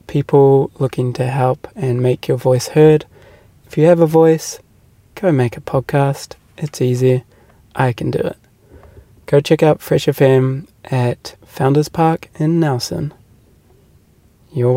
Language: English